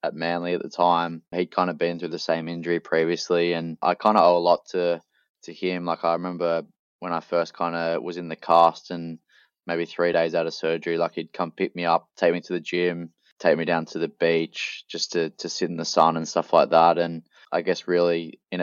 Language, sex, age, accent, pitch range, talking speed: English, male, 20-39, Australian, 85-90 Hz, 240 wpm